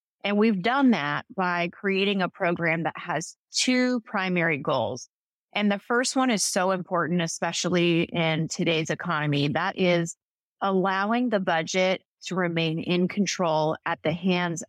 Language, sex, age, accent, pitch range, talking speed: English, female, 30-49, American, 170-195 Hz, 145 wpm